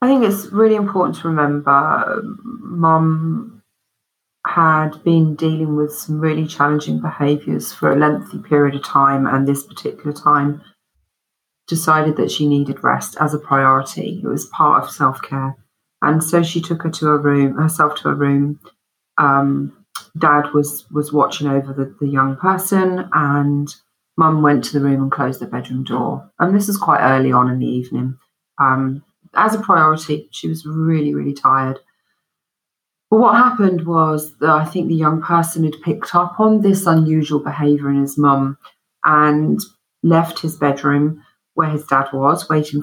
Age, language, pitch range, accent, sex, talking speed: 40-59, English, 140-160 Hz, British, female, 165 wpm